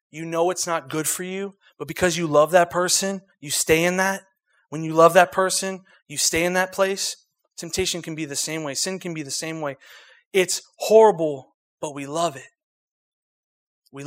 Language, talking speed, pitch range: English, 195 wpm, 155-195 Hz